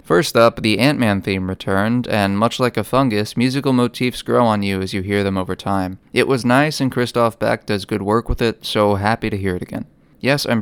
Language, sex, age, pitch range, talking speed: English, male, 20-39, 100-115 Hz, 230 wpm